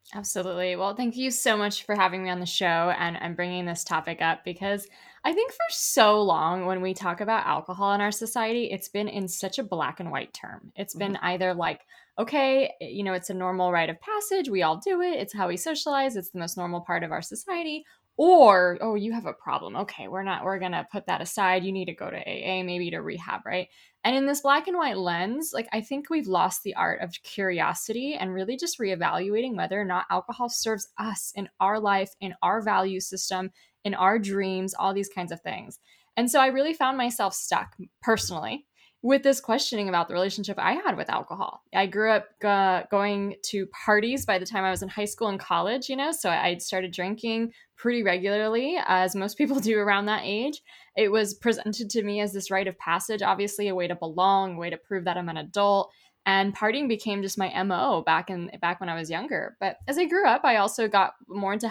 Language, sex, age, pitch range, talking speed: English, female, 10-29, 185-230 Hz, 225 wpm